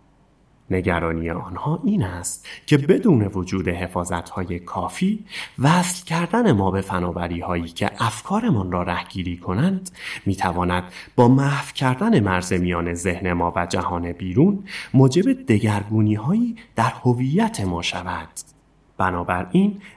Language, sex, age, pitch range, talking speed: Persian, male, 30-49, 90-140 Hz, 115 wpm